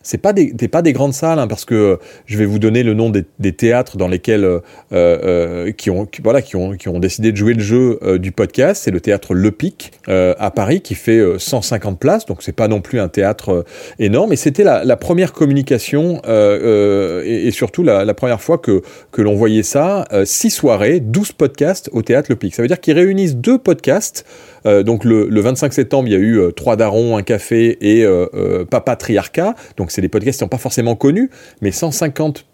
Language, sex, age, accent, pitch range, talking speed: French, male, 30-49, French, 100-140 Hz, 235 wpm